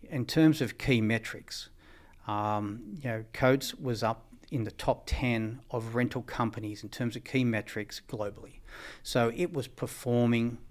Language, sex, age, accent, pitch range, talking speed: English, male, 40-59, Australian, 105-125 Hz, 155 wpm